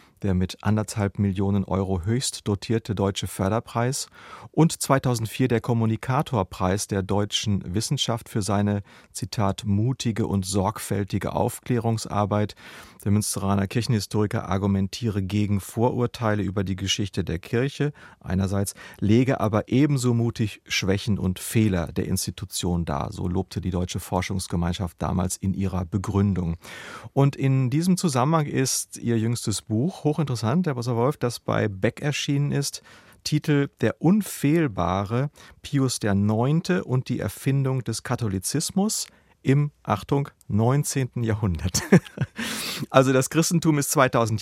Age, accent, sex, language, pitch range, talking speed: 40-59, German, male, German, 95-130 Hz, 120 wpm